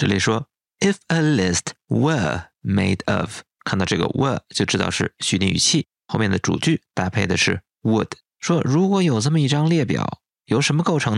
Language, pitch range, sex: Chinese, 105-150 Hz, male